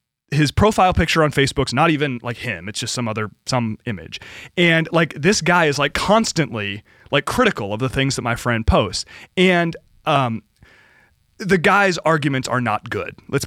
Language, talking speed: English, 180 wpm